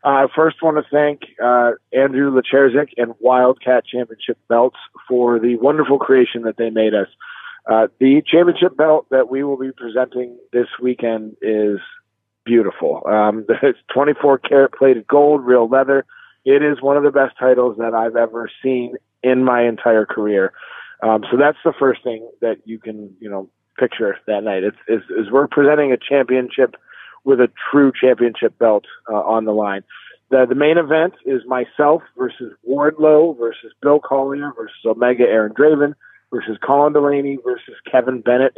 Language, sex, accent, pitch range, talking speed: English, male, American, 115-140 Hz, 165 wpm